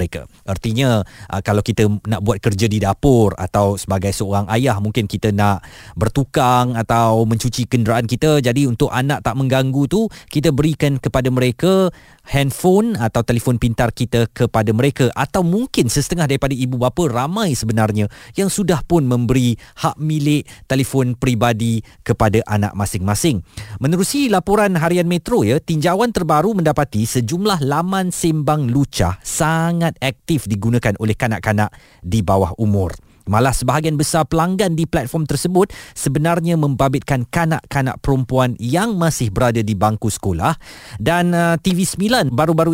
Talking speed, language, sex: 135 wpm, Malay, male